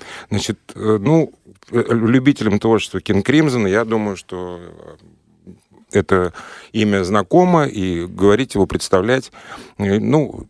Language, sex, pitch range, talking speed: Russian, male, 85-105 Hz, 95 wpm